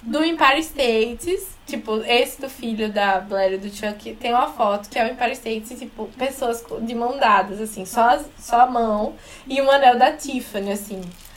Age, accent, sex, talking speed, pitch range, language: 10-29, Brazilian, female, 195 wpm, 220-285 Hz, Portuguese